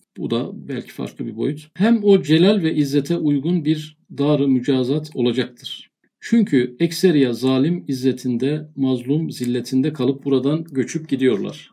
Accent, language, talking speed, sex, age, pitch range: native, Turkish, 135 wpm, male, 50-69, 130-170 Hz